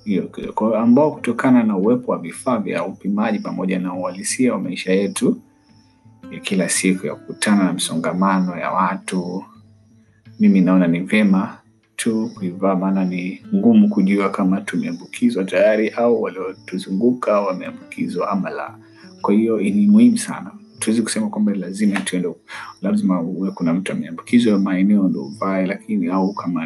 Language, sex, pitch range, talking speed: Swahili, male, 95-120 Hz, 140 wpm